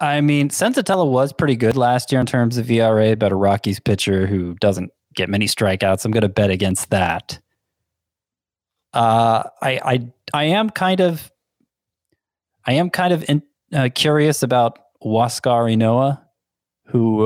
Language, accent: English, American